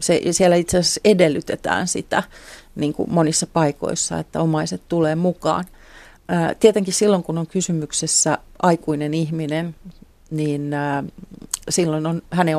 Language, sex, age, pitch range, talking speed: Finnish, female, 40-59, 150-180 Hz, 110 wpm